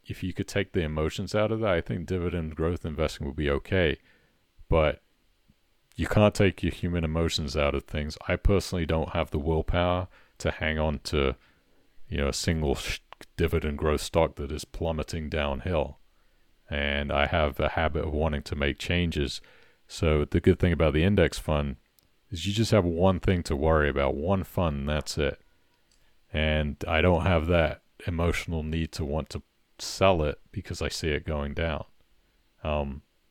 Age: 40-59